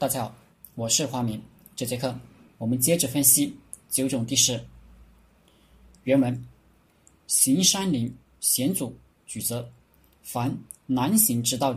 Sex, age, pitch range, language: male, 20-39, 110-140 Hz, Chinese